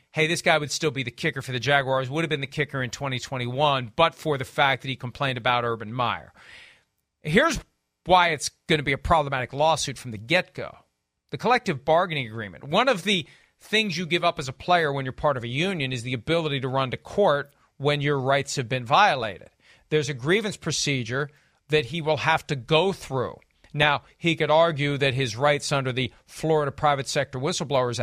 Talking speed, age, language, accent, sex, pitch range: 210 wpm, 40-59, English, American, male, 135-175 Hz